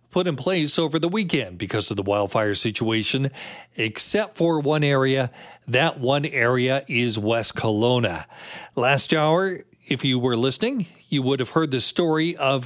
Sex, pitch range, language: male, 120-160 Hz, English